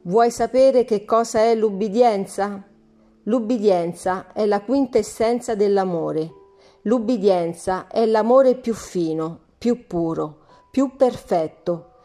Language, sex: Italian, female